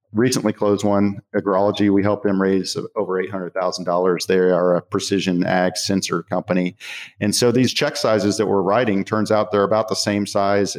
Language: English